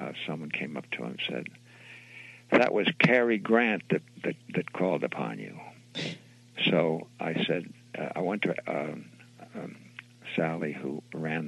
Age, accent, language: 60-79, American, English